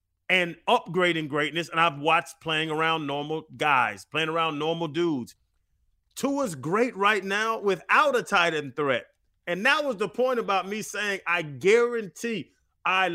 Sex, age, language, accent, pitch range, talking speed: male, 30-49, English, American, 160-225 Hz, 155 wpm